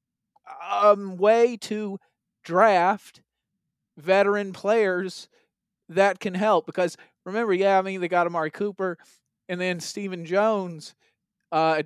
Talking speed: 115 wpm